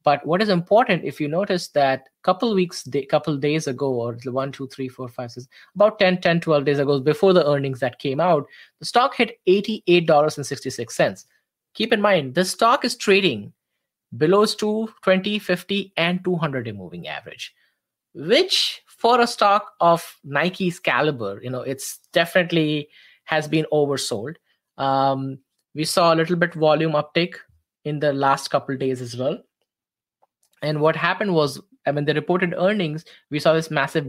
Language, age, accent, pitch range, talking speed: English, 20-39, Indian, 140-185 Hz, 170 wpm